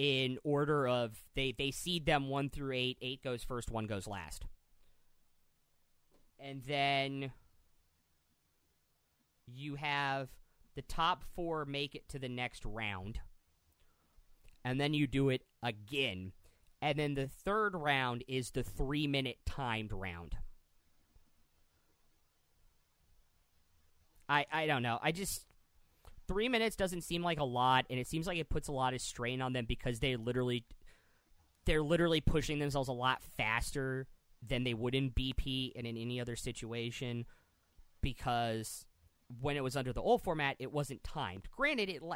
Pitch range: 90-140 Hz